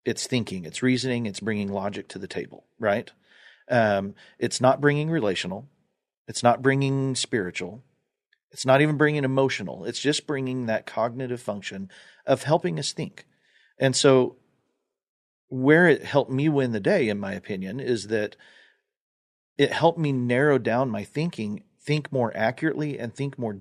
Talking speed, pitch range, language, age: 160 wpm, 110-140 Hz, English, 40-59